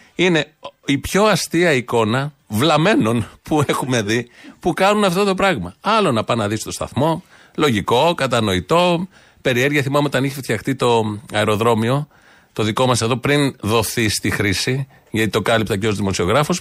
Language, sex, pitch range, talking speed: Greek, male, 110-155 Hz, 160 wpm